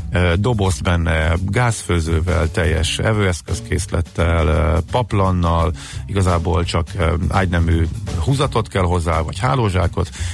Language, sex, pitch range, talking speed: Hungarian, male, 85-105 Hz, 80 wpm